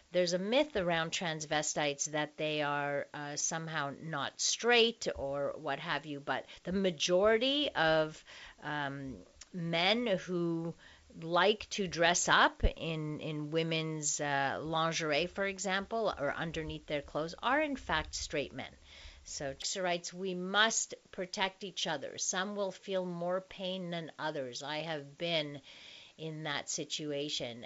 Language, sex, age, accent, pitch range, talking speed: English, female, 50-69, American, 155-190 Hz, 140 wpm